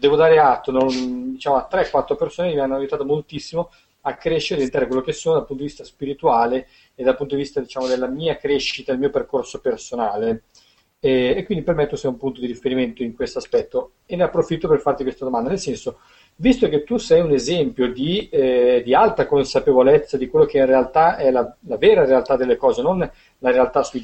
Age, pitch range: 40-59, 135-205 Hz